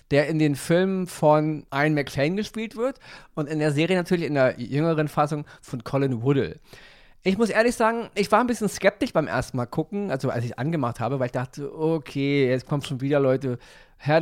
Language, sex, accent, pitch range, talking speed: German, male, German, 135-170 Hz, 210 wpm